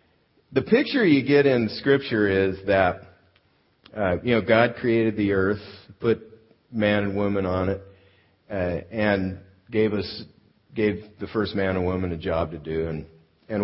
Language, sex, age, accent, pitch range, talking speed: English, male, 50-69, American, 90-110 Hz, 165 wpm